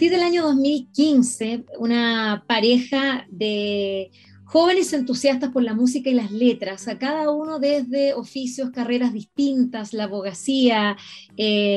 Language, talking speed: Spanish, 135 wpm